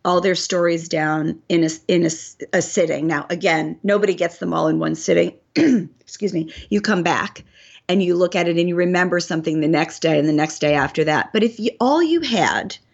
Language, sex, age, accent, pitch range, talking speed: English, female, 40-59, American, 165-195 Hz, 210 wpm